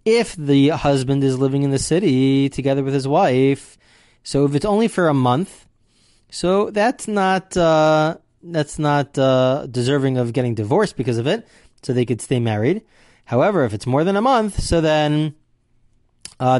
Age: 30-49